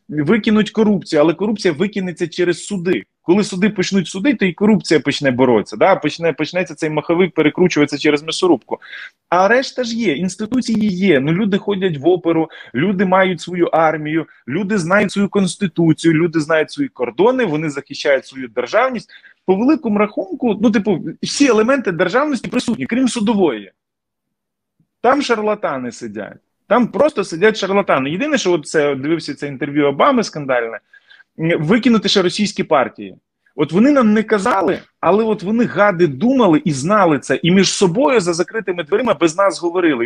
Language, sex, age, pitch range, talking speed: Ukrainian, male, 20-39, 160-220 Hz, 155 wpm